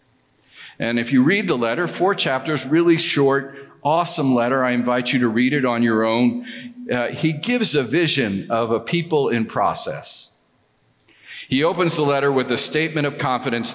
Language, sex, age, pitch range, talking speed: English, male, 50-69, 115-150 Hz, 175 wpm